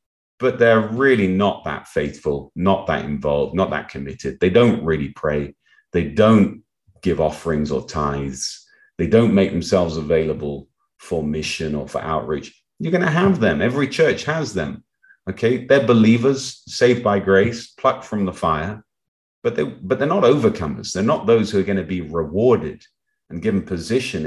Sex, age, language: male, 40-59, English